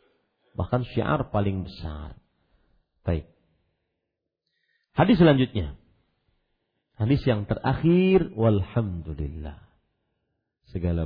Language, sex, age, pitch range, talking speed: Malay, male, 40-59, 115-160 Hz, 65 wpm